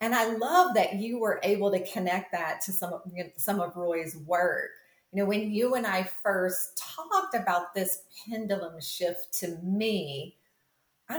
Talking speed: 180 wpm